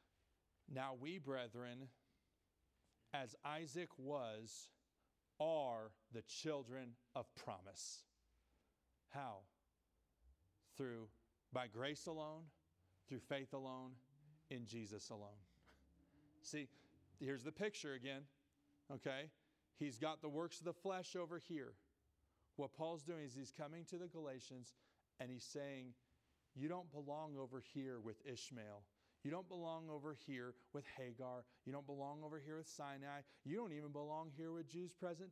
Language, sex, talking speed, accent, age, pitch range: English, male, 135 wpm, American, 40-59, 110-150 Hz